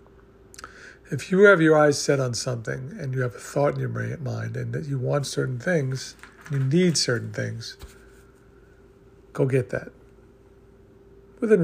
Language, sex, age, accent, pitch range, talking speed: English, male, 50-69, American, 125-150 Hz, 155 wpm